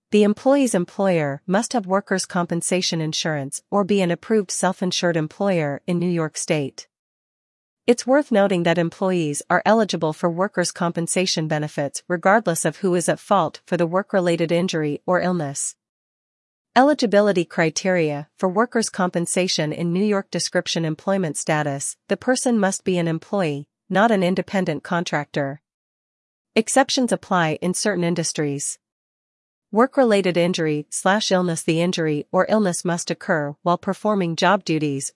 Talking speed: 140 wpm